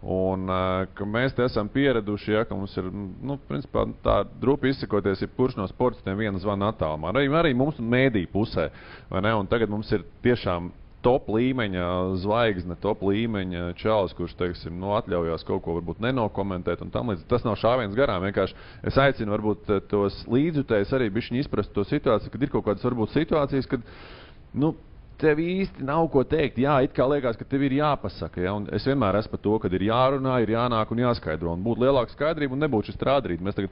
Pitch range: 95-120 Hz